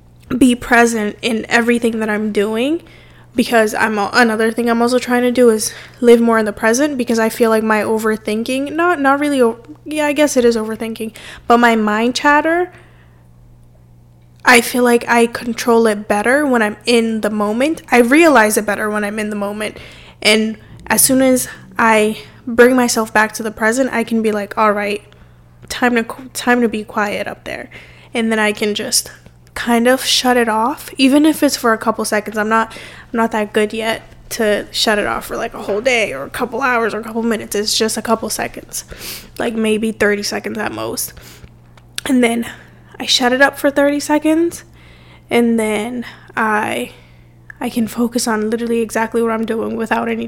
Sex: female